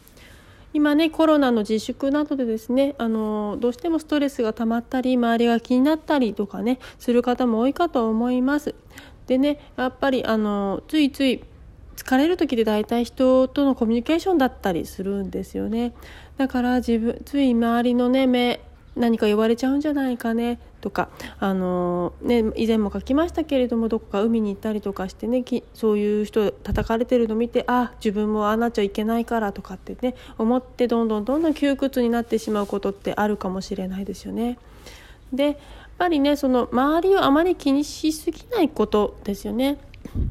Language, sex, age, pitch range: Japanese, female, 40-59, 220-275 Hz